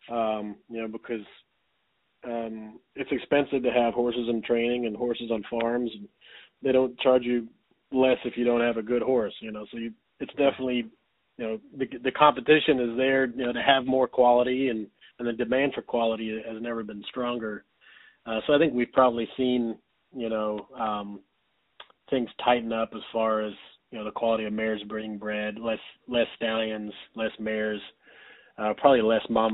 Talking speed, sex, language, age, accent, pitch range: 180 wpm, male, English, 30-49, American, 110-120 Hz